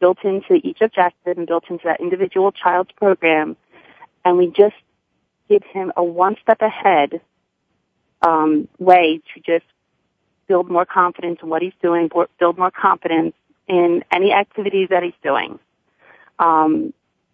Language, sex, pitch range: English, female, 170-220 Hz